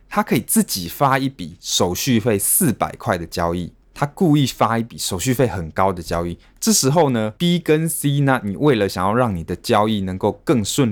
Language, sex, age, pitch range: Chinese, male, 20-39, 95-125 Hz